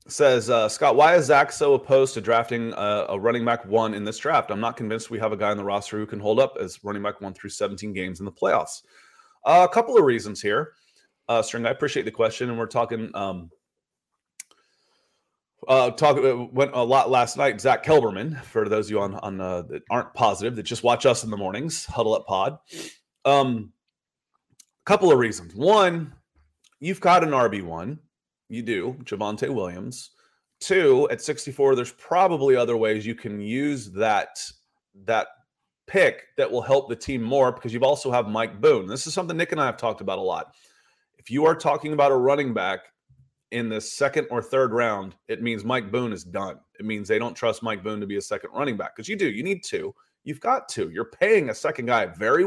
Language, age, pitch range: English, 30-49, 110-150 Hz